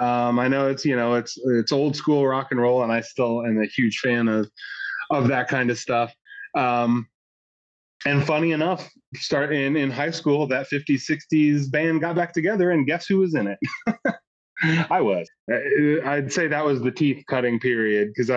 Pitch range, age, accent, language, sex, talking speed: 120-155 Hz, 30-49, American, English, male, 190 wpm